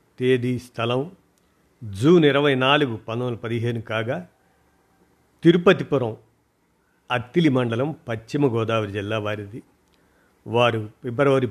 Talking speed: 90 wpm